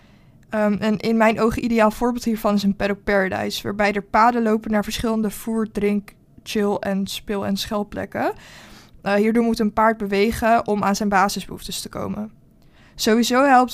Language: Dutch